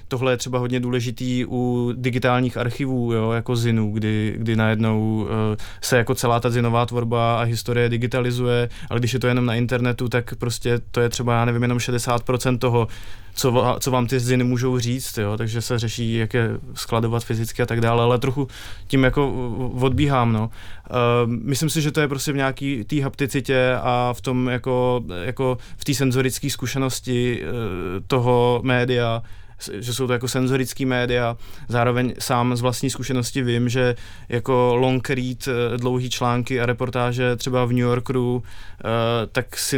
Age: 20-39